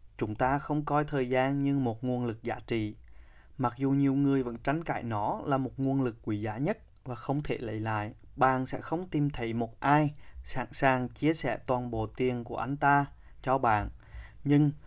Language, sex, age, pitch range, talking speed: Vietnamese, male, 20-39, 115-140 Hz, 210 wpm